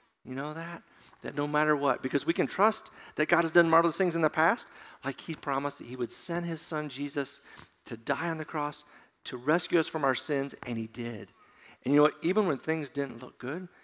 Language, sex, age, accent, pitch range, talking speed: English, male, 50-69, American, 135-175 Hz, 235 wpm